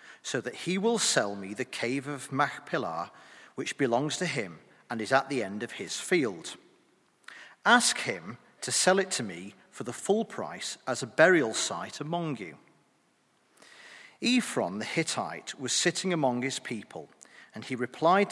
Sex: male